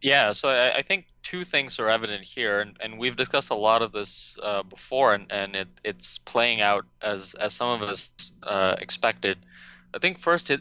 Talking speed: 205 wpm